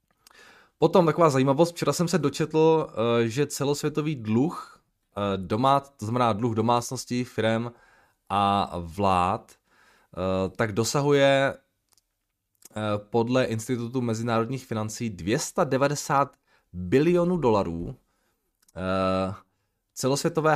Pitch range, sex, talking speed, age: 105-140 Hz, male, 75 wpm, 20-39